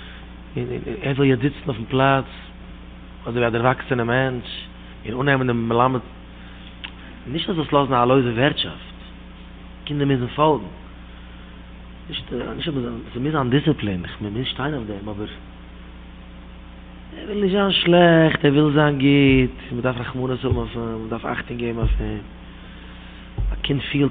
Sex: male